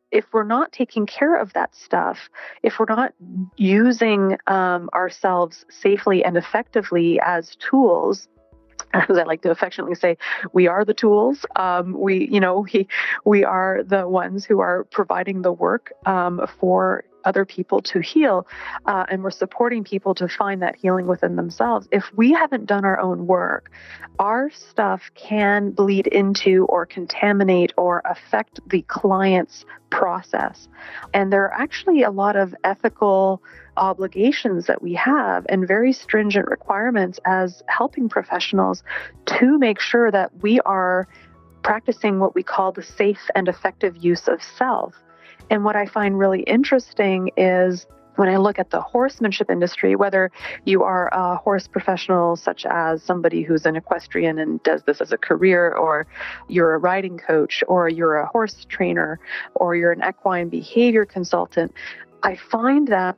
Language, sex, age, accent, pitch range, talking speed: English, female, 30-49, American, 180-210 Hz, 160 wpm